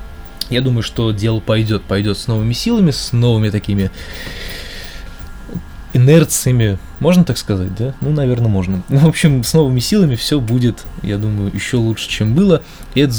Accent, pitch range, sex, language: native, 100-130 Hz, male, Russian